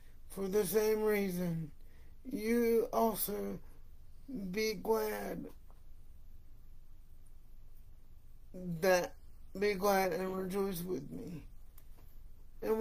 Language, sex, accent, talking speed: English, male, American, 75 wpm